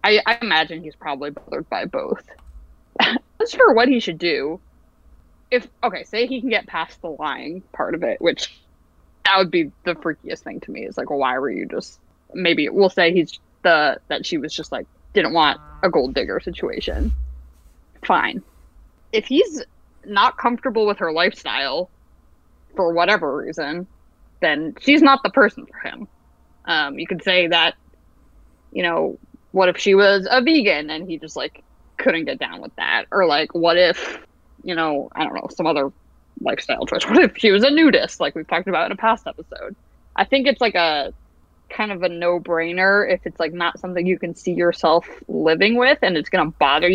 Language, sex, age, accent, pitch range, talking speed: English, female, 20-39, American, 155-245 Hz, 190 wpm